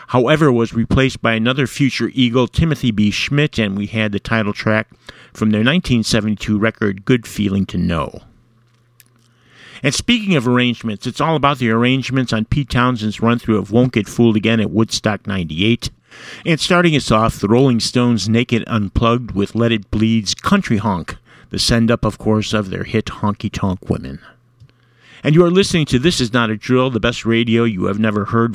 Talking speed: 180 wpm